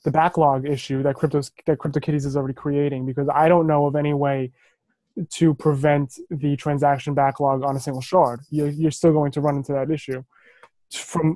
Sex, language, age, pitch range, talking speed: male, English, 20-39, 140-175 Hz, 190 wpm